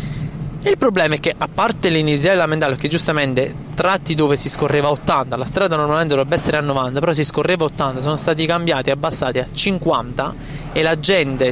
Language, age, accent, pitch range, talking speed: Italian, 20-39, native, 140-165 Hz, 190 wpm